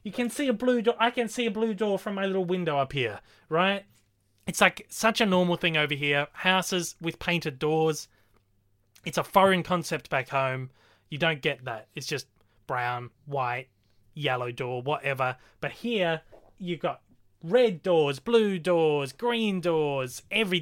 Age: 20-39